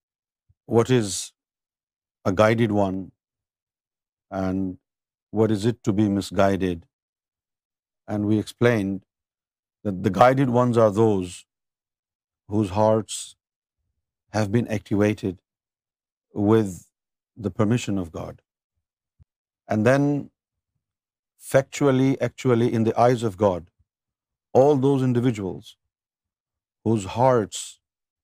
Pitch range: 95-125 Hz